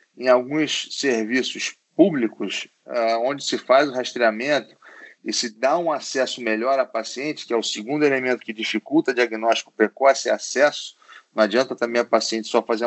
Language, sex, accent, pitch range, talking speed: Portuguese, male, Brazilian, 125-160 Hz, 175 wpm